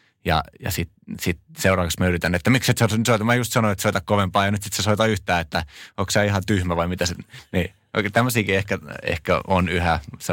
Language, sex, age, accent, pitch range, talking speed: Finnish, male, 20-39, native, 90-110 Hz, 220 wpm